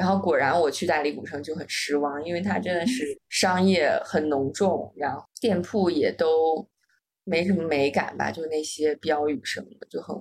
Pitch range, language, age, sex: 165-225 Hz, Chinese, 20-39, female